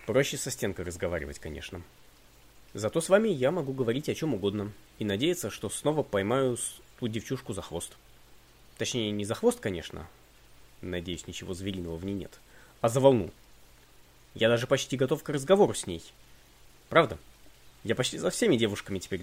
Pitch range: 95-140 Hz